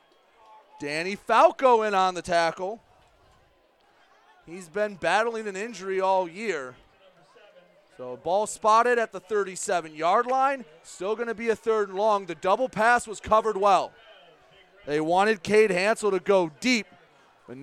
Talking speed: 145 wpm